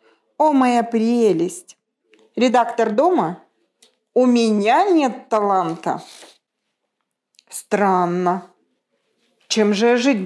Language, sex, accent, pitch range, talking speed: Russian, female, native, 190-250 Hz, 80 wpm